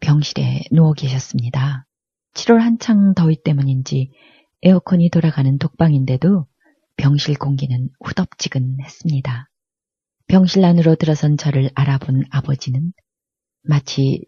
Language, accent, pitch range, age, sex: Korean, native, 135-170 Hz, 40-59, female